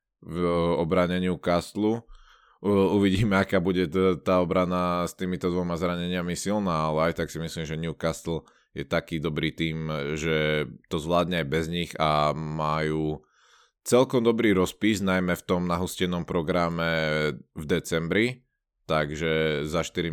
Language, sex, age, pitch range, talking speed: Slovak, male, 20-39, 80-90 Hz, 135 wpm